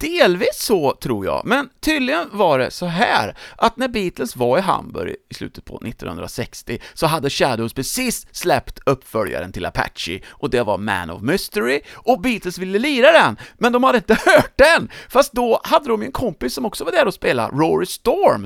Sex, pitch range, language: male, 160-260 Hz, English